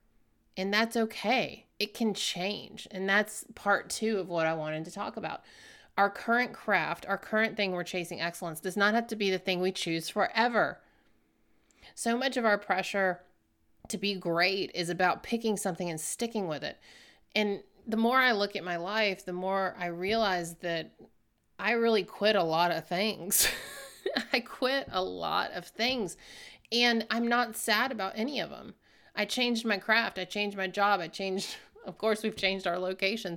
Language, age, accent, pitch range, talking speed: English, 30-49, American, 185-225 Hz, 185 wpm